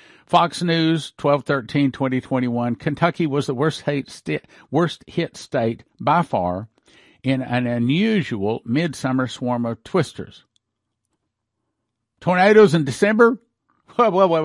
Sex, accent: male, American